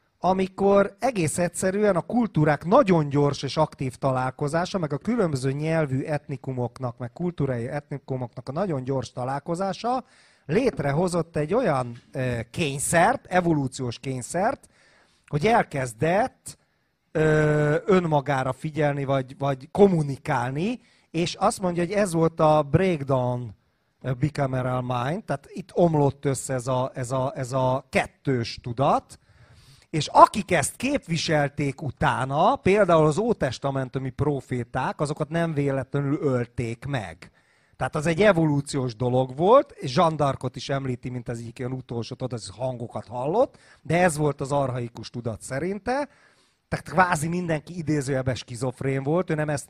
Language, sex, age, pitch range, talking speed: Hungarian, male, 30-49, 130-170 Hz, 125 wpm